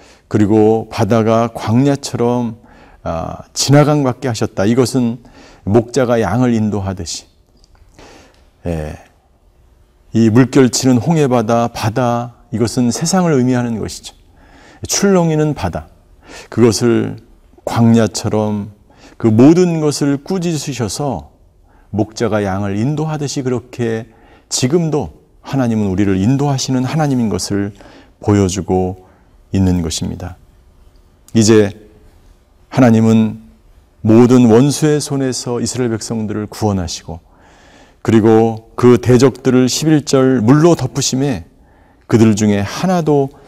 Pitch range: 95-130 Hz